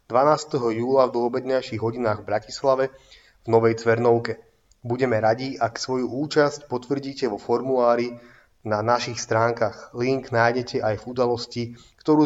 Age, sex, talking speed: 30-49, male, 130 wpm